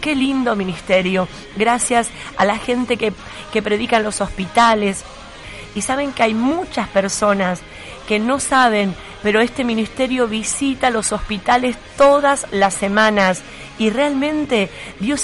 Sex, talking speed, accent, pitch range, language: female, 135 wpm, Argentinian, 200-250 Hz, Spanish